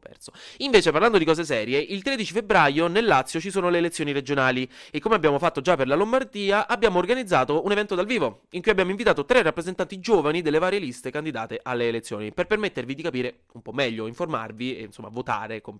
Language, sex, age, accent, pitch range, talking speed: Italian, male, 20-39, native, 115-190 Hz, 210 wpm